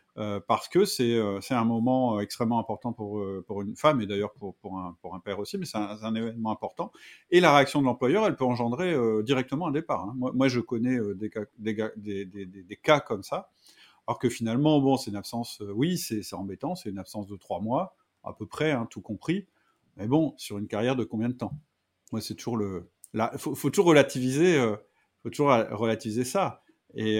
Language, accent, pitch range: French, French, 110-140 Hz